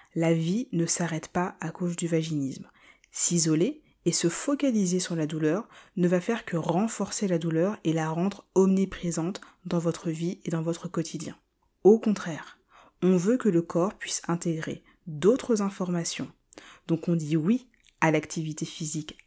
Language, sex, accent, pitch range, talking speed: French, female, French, 160-200 Hz, 160 wpm